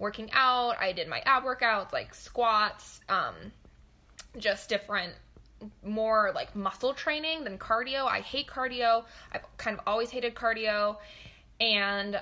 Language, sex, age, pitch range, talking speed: English, female, 10-29, 200-255 Hz, 135 wpm